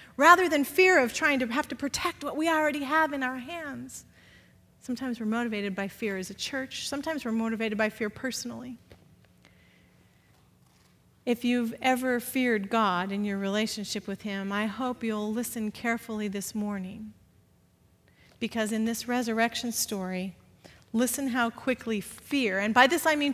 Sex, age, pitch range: female, 40-59, 235-315 Hz